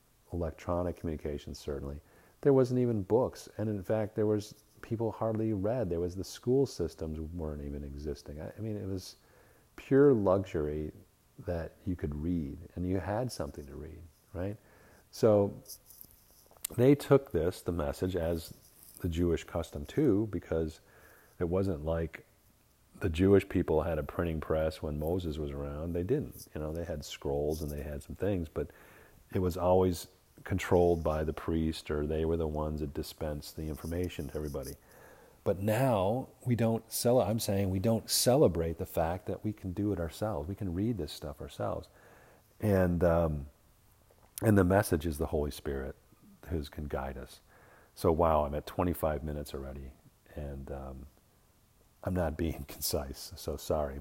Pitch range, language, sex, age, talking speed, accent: 75-100 Hz, English, male, 50-69, 170 wpm, American